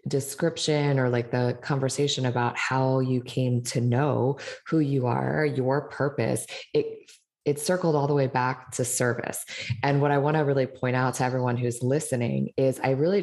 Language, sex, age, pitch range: English, female, 20-39, 125-150 Hz